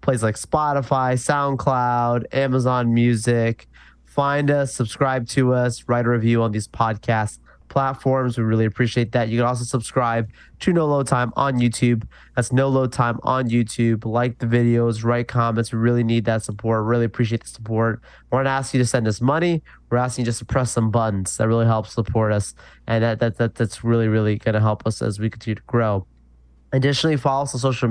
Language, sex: English, male